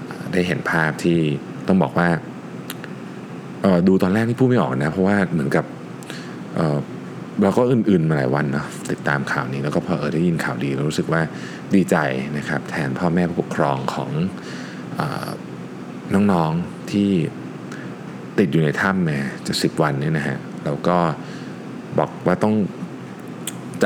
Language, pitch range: Thai, 65-90 Hz